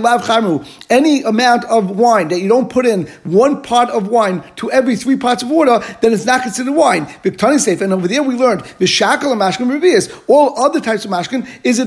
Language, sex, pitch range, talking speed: English, male, 210-260 Hz, 185 wpm